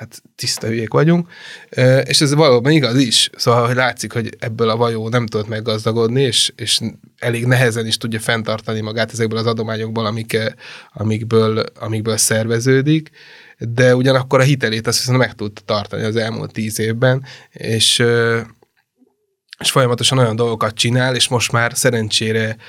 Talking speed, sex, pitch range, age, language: 150 wpm, male, 110-125 Hz, 20-39, Hungarian